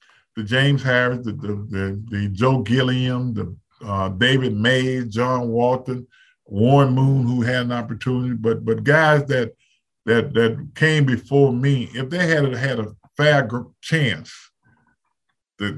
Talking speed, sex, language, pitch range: 145 wpm, male, English, 115-140 Hz